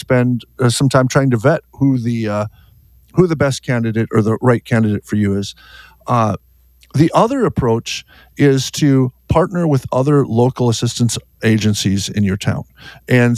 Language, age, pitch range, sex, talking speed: English, 50-69, 110-140 Hz, male, 160 wpm